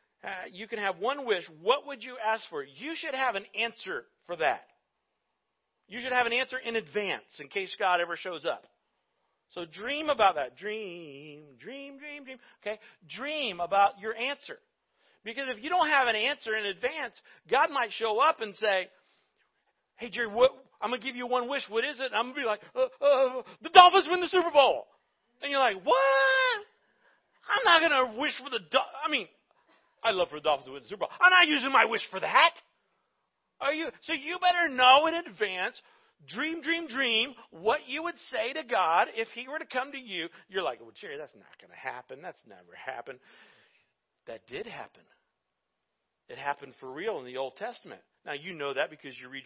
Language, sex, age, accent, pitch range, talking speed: English, male, 50-69, American, 195-300 Hz, 205 wpm